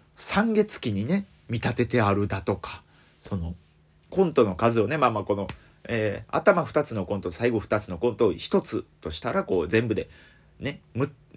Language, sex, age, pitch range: Japanese, male, 30-49, 95-150 Hz